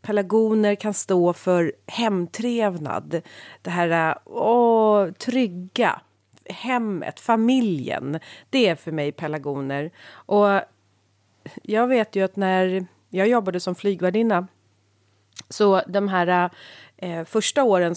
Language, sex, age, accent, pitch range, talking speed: Swedish, female, 30-49, native, 170-225 Hz, 105 wpm